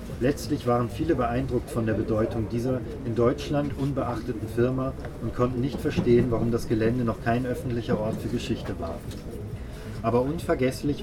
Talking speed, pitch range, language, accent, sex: 150 wpm, 110-130 Hz, German, German, male